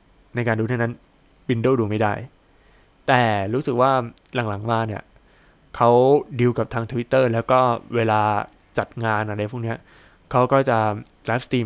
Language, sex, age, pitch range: Thai, male, 20-39, 105-130 Hz